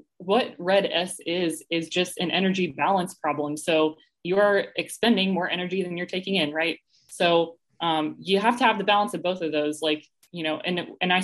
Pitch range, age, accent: 155-180 Hz, 20-39, American